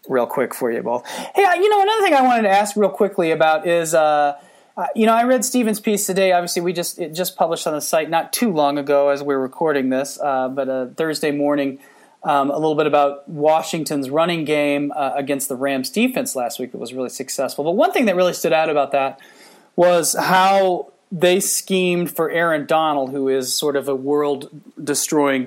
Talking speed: 215 wpm